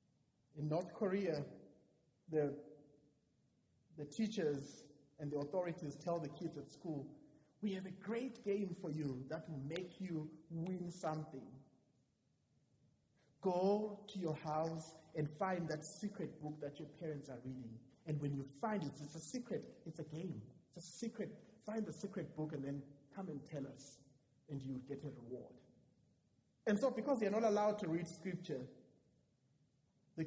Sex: male